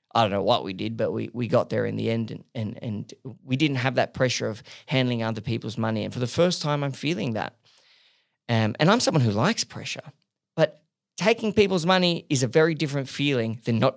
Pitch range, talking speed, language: 120-155 Hz, 230 wpm, English